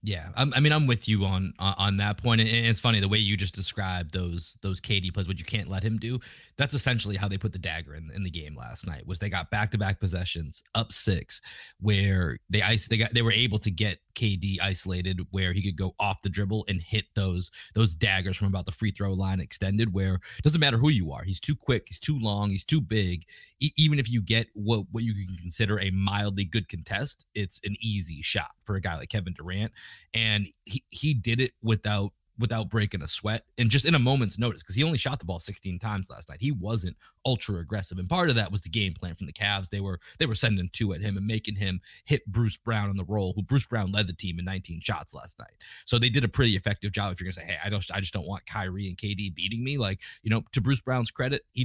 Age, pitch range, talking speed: 30-49, 95-115 Hz, 260 wpm